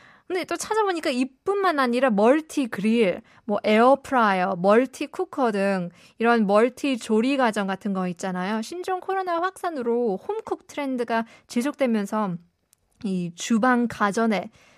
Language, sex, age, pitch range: Korean, female, 20-39, 205-290 Hz